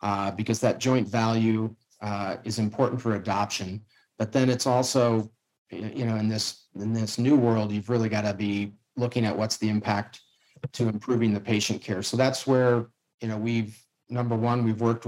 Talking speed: 185 wpm